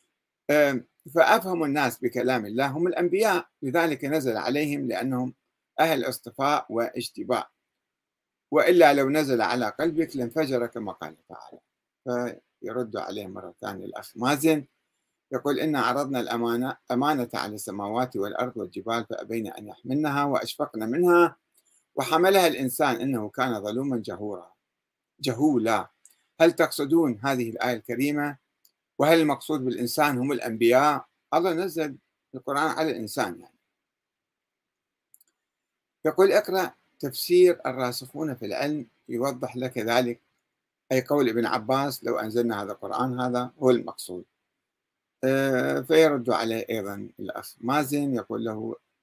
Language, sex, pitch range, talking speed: Arabic, male, 120-155 Hz, 115 wpm